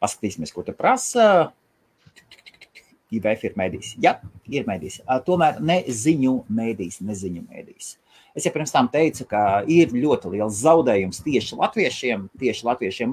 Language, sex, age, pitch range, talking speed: English, male, 30-49, 105-165 Hz, 135 wpm